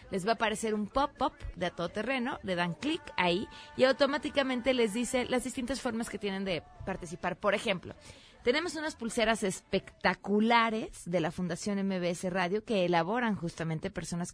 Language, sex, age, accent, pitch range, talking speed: Spanish, female, 30-49, Mexican, 165-230 Hz, 165 wpm